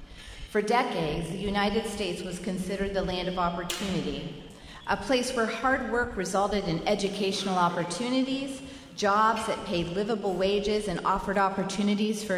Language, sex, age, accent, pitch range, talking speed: English, female, 30-49, American, 165-210 Hz, 140 wpm